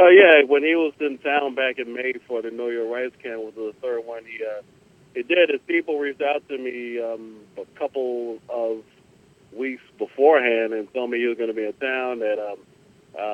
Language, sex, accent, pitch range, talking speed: English, male, American, 120-140 Hz, 225 wpm